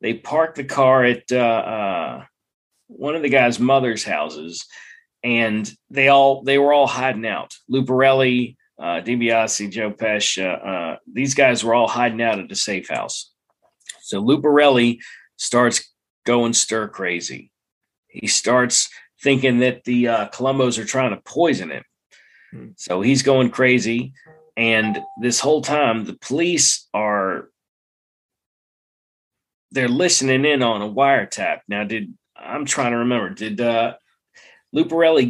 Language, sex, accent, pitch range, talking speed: English, male, American, 115-135 Hz, 140 wpm